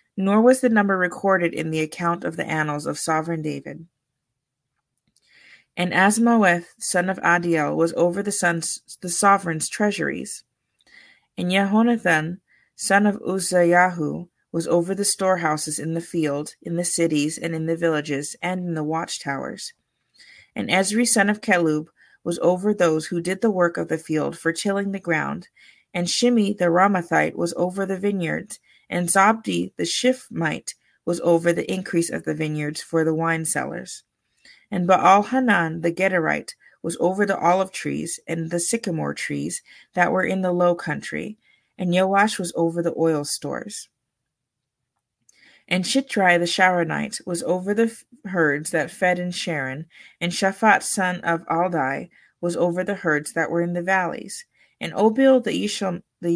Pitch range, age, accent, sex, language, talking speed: 165-195 Hz, 30-49, American, female, English, 155 wpm